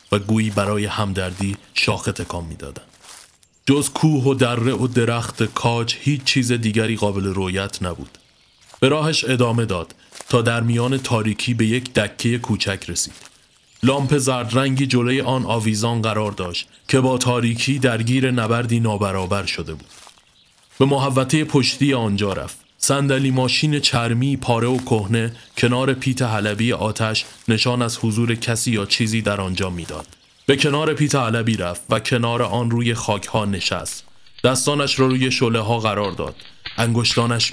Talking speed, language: 150 wpm, Persian